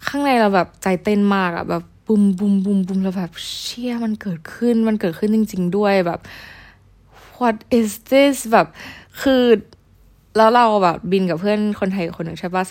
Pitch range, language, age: 170-210 Hz, Thai, 20-39